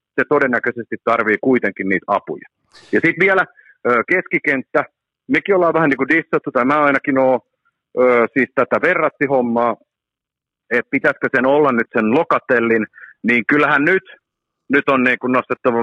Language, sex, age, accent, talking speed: Finnish, male, 50-69, native, 135 wpm